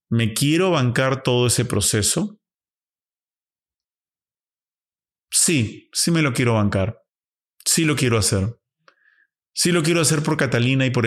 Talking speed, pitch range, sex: 130 wpm, 100-135 Hz, male